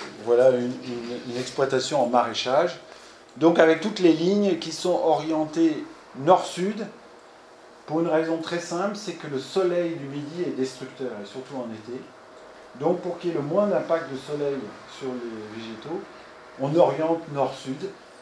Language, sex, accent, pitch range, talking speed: French, male, French, 130-180 Hz, 160 wpm